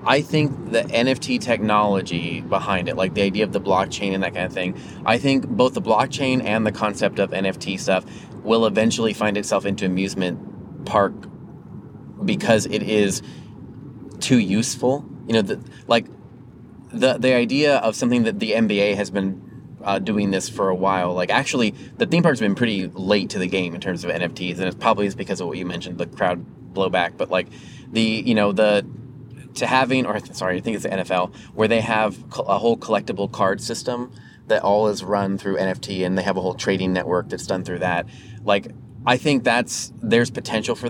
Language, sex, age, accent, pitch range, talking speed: English, male, 20-39, American, 95-120 Hz, 200 wpm